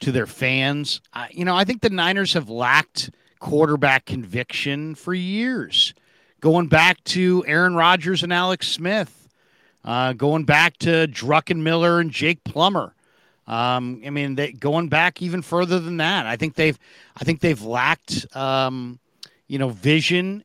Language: English